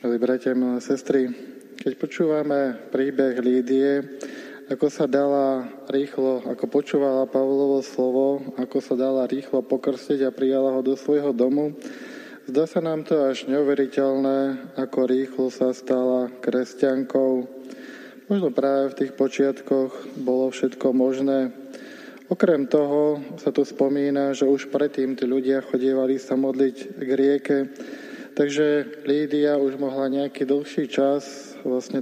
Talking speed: 125 wpm